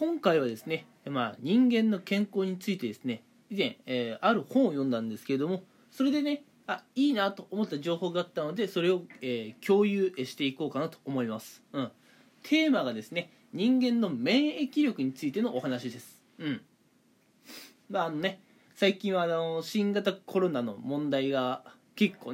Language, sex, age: Japanese, male, 20-39